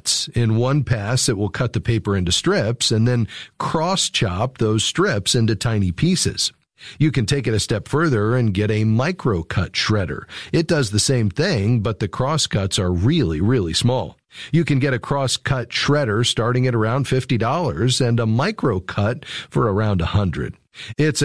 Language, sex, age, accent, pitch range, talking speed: English, male, 40-59, American, 105-135 Hz, 165 wpm